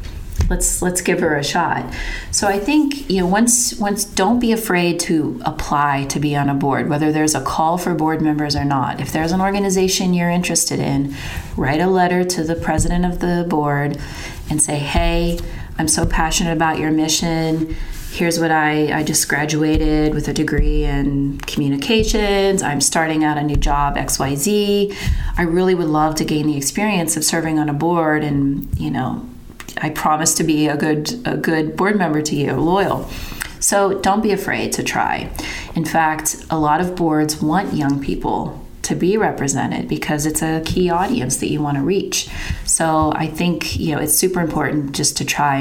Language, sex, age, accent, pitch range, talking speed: English, female, 30-49, American, 150-185 Hz, 190 wpm